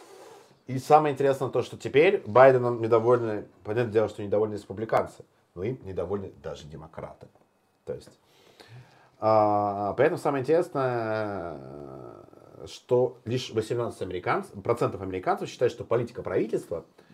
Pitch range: 100-150 Hz